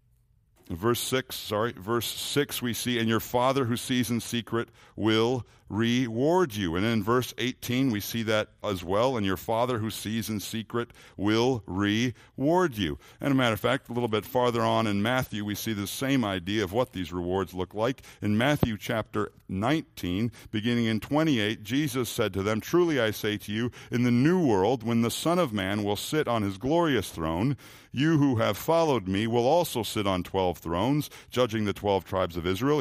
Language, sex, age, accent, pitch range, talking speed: English, male, 60-79, American, 110-140 Hz, 195 wpm